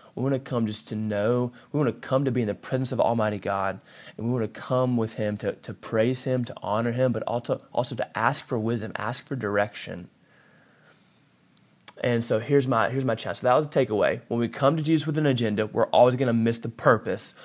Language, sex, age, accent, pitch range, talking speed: English, male, 20-39, American, 115-140 Hz, 240 wpm